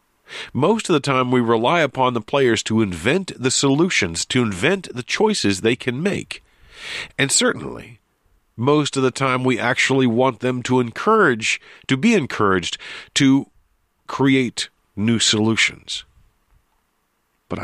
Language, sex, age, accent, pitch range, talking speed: English, male, 50-69, American, 110-145 Hz, 135 wpm